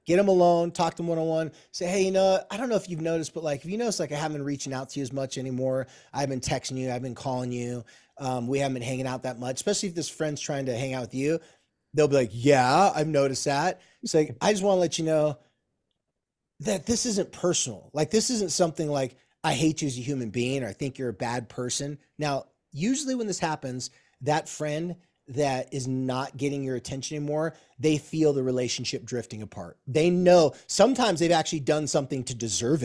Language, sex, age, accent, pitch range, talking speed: English, male, 20-39, American, 135-180 Hz, 230 wpm